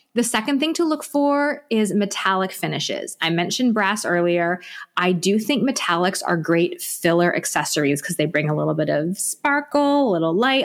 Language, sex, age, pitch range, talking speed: English, female, 20-39, 180-235 Hz, 180 wpm